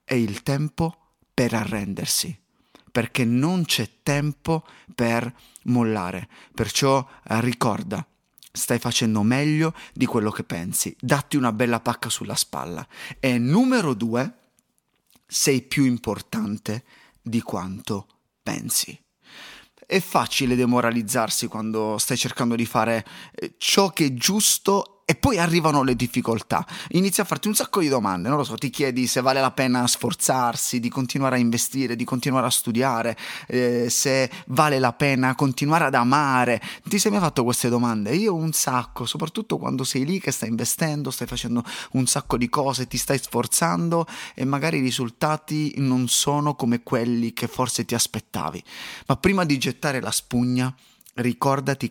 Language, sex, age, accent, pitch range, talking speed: Italian, male, 30-49, native, 120-145 Hz, 150 wpm